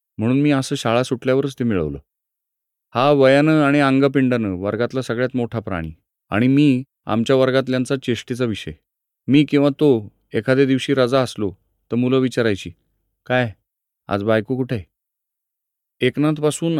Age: 30-49